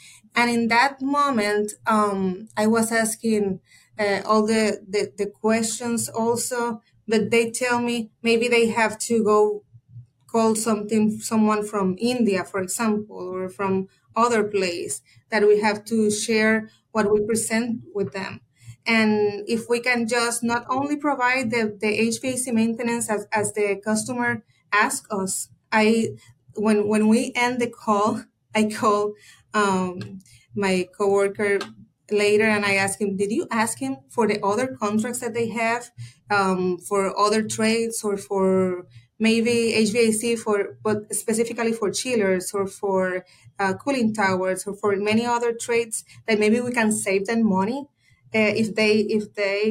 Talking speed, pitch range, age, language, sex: 150 wpm, 200-230 Hz, 30-49, English, female